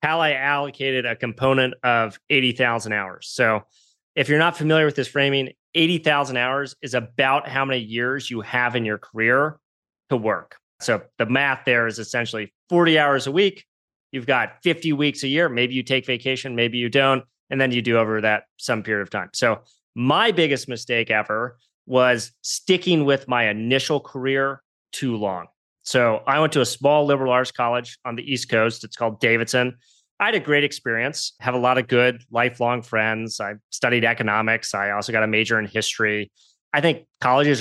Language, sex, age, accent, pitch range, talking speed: English, male, 30-49, American, 115-140 Hz, 185 wpm